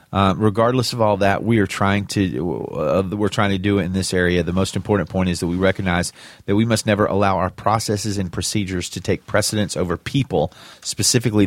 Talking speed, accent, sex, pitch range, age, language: 215 wpm, American, male, 90-110 Hz, 30-49, English